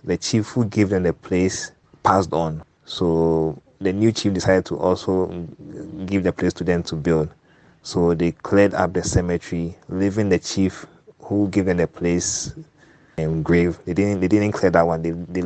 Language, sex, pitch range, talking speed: English, male, 85-95 Hz, 185 wpm